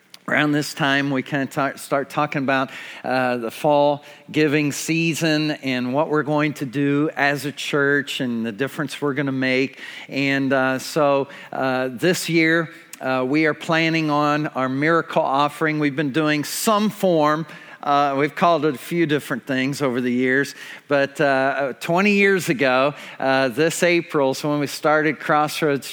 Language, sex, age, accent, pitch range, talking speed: English, male, 50-69, American, 140-160 Hz, 170 wpm